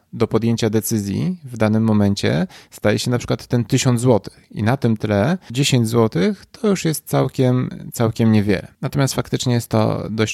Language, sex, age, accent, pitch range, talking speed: Polish, male, 20-39, native, 110-130 Hz, 175 wpm